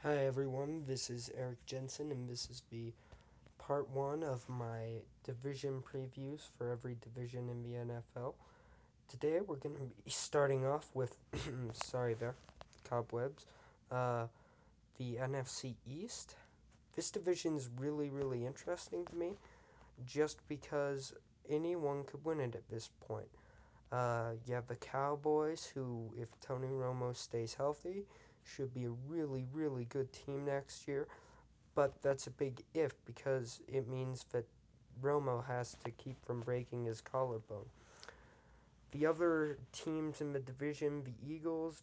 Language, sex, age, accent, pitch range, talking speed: English, male, 20-39, American, 120-145 Hz, 140 wpm